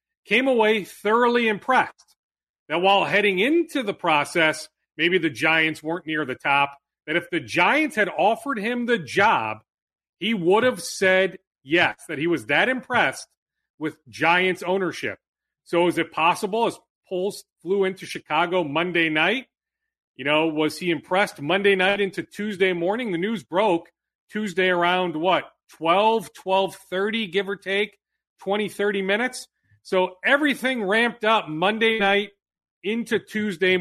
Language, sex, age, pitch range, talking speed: English, male, 40-59, 165-215 Hz, 145 wpm